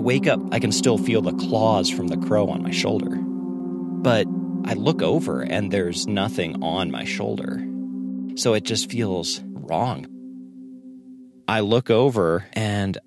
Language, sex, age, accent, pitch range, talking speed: English, male, 40-59, American, 80-110 Hz, 150 wpm